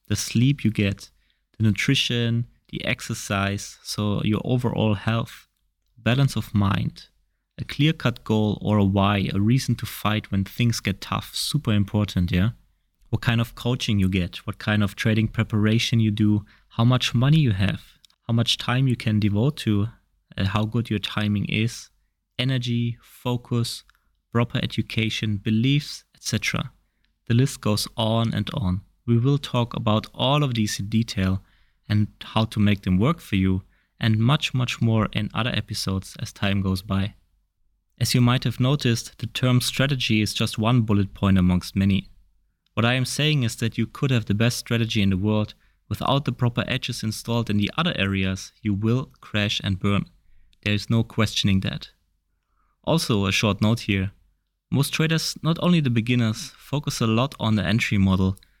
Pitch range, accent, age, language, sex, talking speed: 100-120 Hz, German, 30-49, English, male, 175 wpm